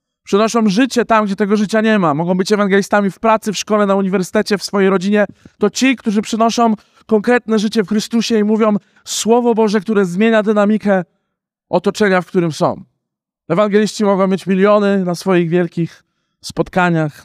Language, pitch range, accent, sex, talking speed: Polish, 150-195 Hz, native, male, 165 wpm